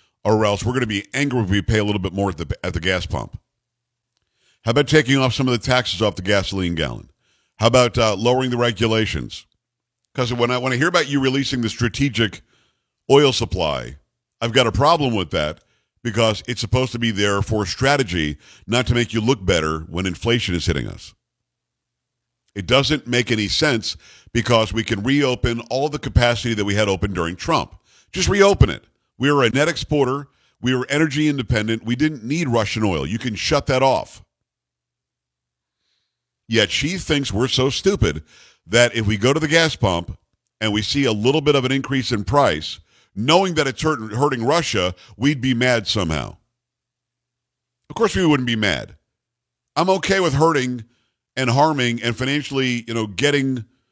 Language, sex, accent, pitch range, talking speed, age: English, male, American, 110-135 Hz, 185 wpm, 50-69